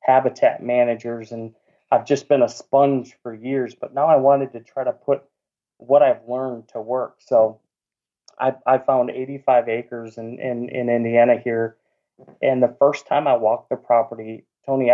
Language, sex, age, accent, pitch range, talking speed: English, male, 30-49, American, 115-130 Hz, 175 wpm